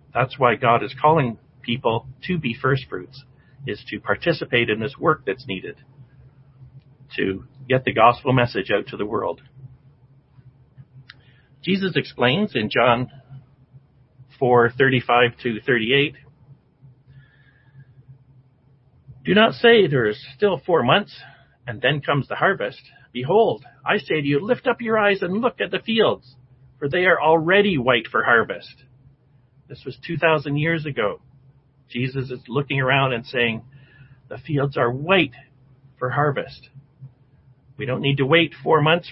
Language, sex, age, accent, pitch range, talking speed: English, male, 50-69, American, 125-140 Hz, 140 wpm